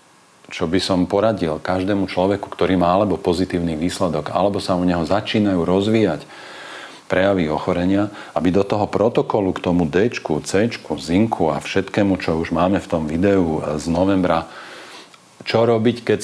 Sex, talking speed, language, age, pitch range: male, 150 wpm, Slovak, 40-59, 85-95 Hz